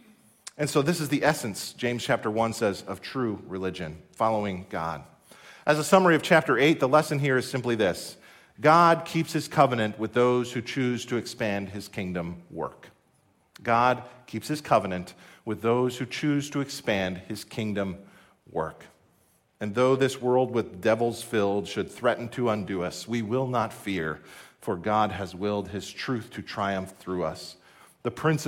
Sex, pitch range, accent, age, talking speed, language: male, 110-145 Hz, American, 40-59, 170 wpm, English